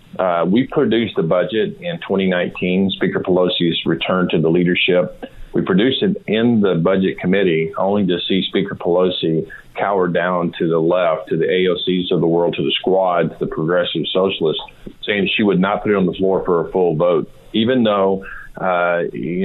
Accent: American